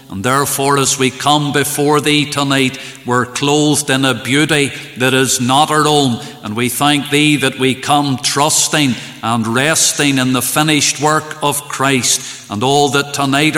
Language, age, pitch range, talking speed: English, 50-69, 135-150 Hz, 170 wpm